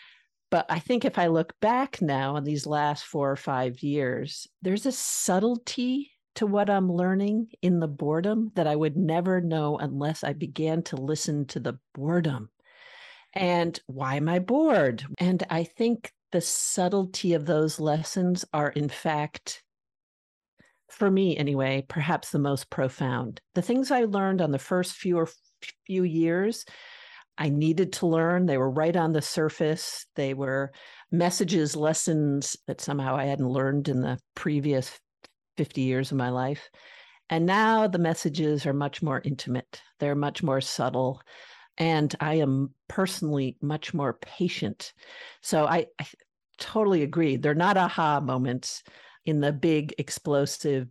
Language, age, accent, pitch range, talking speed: English, 50-69, American, 145-185 Hz, 155 wpm